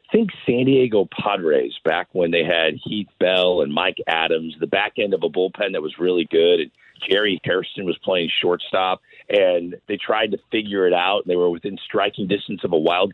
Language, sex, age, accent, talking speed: English, male, 40-59, American, 205 wpm